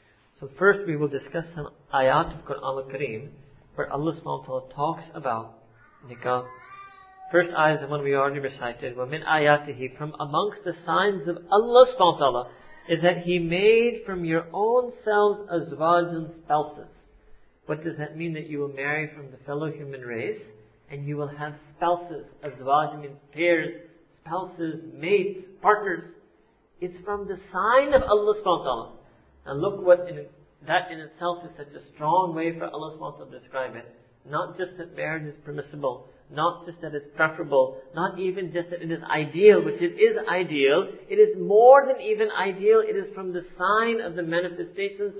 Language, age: English, 40-59